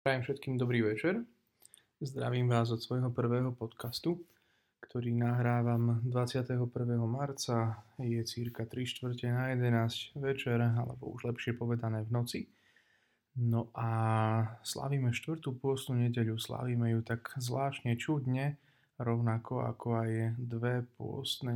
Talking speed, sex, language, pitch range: 115 wpm, male, Slovak, 115-130 Hz